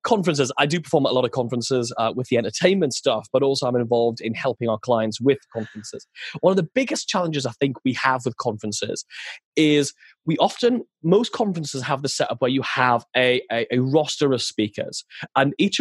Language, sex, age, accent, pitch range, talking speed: English, male, 20-39, British, 125-180 Hz, 205 wpm